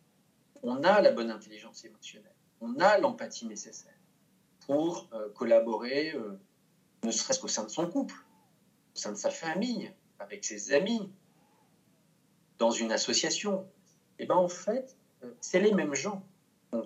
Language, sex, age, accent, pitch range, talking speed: French, male, 40-59, French, 130-215 Hz, 150 wpm